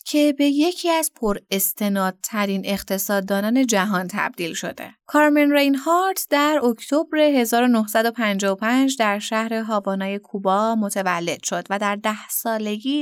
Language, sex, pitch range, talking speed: Persian, female, 205-275 Hz, 115 wpm